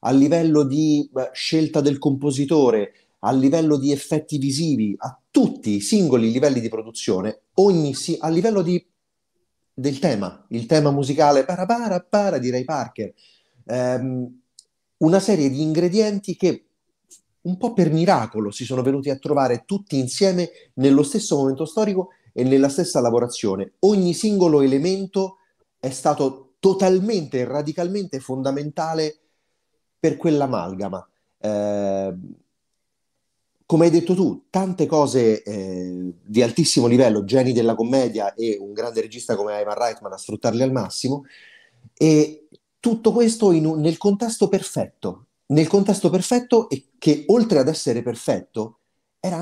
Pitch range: 120-175 Hz